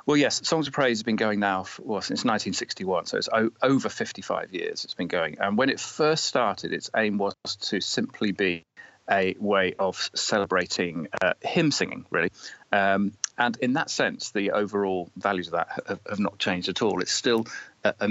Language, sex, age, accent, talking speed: English, male, 40-59, British, 200 wpm